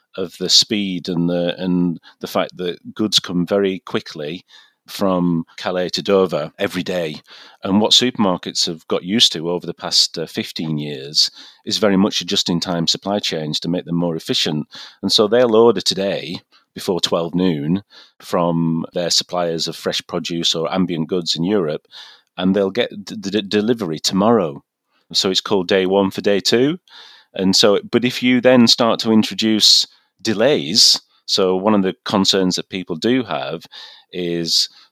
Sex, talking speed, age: male, 170 wpm, 40-59